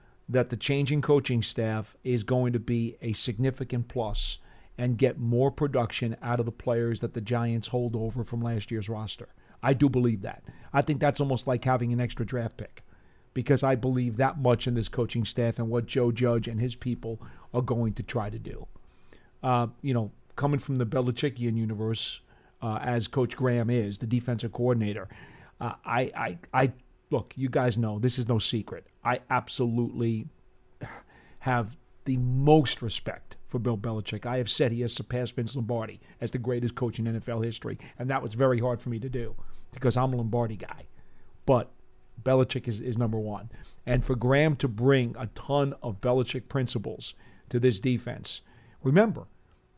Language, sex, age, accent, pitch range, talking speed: English, male, 40-59, American, 115-130 Hz, 180 wpm